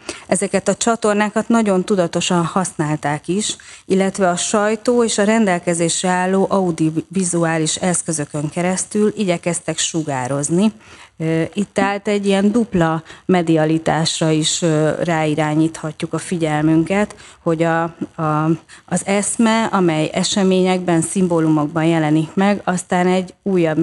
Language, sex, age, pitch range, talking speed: Hungarian, female, 30-49, 160-185 Hz, 105 wpm